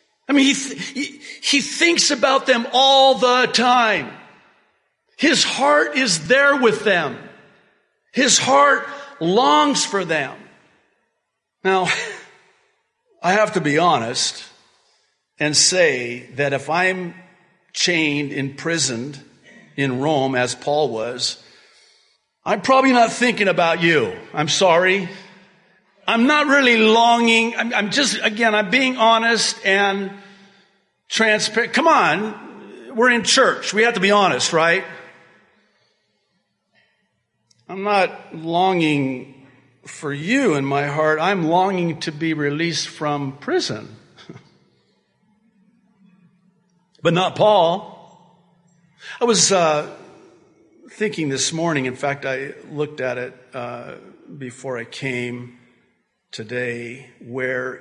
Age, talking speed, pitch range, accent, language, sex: 50-69, 110 wpm, 145-235 Hz, American, English, male